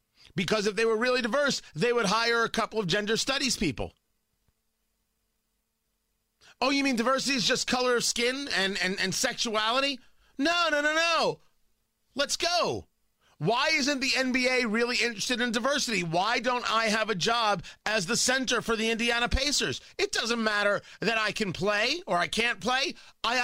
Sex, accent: male, American